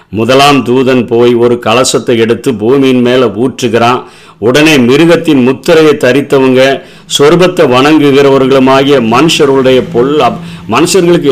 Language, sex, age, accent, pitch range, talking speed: Tamil, male, 50-69, native, 130-165 Hz, 85 wpm